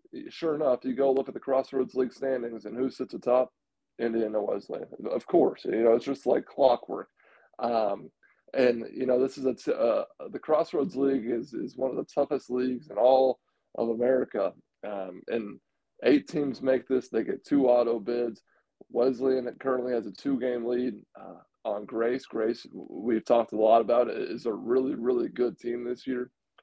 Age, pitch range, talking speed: 20-39, 120-135 Hz, 185 wpm